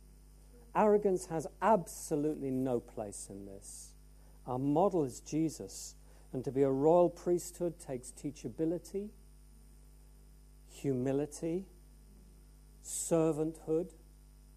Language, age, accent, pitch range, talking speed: English, 50-69, British, 100-155 Hz, 85 wpm